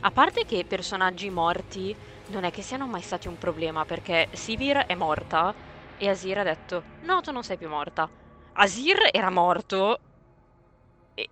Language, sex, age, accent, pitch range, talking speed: Italian, female, 20-39, native, 165-225 Hz, 170 wpm